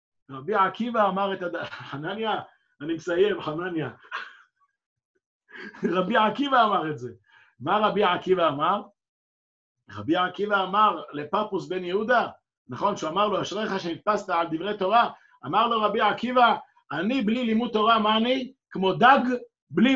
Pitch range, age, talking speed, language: 190-255 Hz, 50-69, 140 wpm, Hebrew